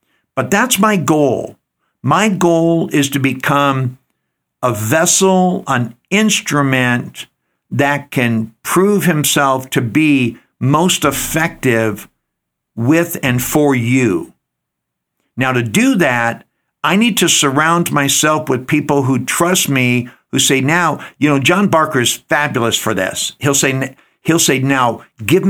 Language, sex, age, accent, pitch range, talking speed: English, male, 60-79, American, 125-165 Hz, 130 wpm